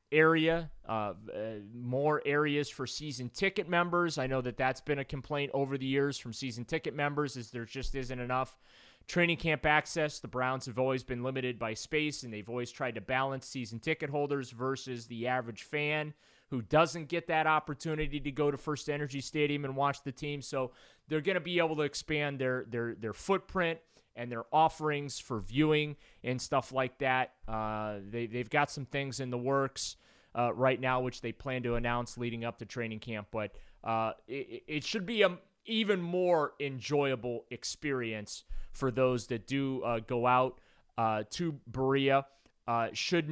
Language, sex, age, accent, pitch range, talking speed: English, male, 30-49, American, 120-150 Hz, 185 wpm